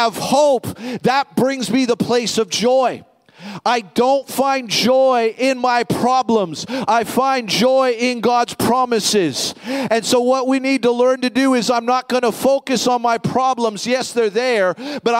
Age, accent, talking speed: 40-59, American, 175 wpm